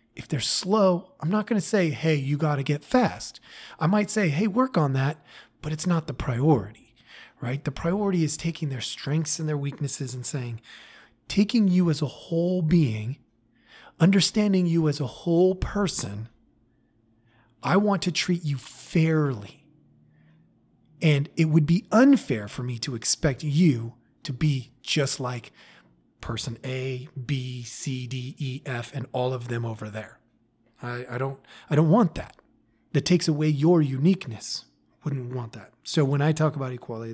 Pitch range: 120-160 Hz